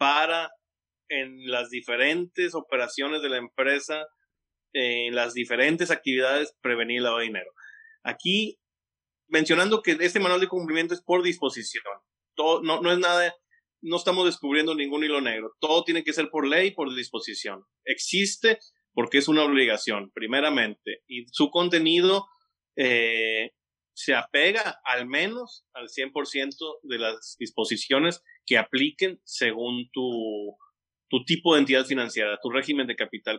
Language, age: Spanish, 30-49